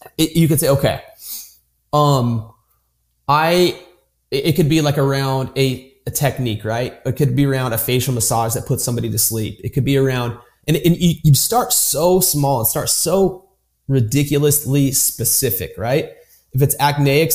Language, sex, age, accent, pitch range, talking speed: English, male, 30-49, American, 115-145 Hz, 160 wpm